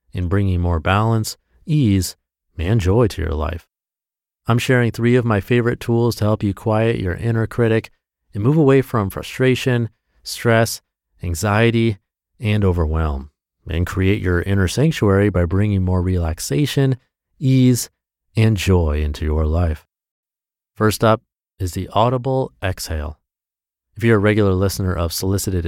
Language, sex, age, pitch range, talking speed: English, male, 30-49, 85-115 Hz, 145 wpm